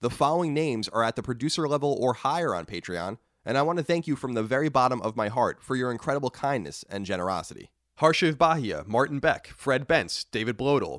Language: English